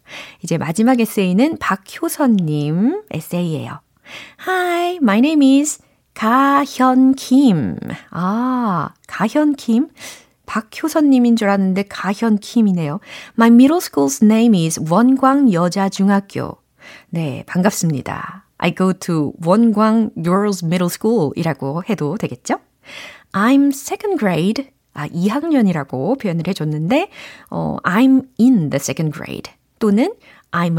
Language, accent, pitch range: Korean, native, 170-255 Hz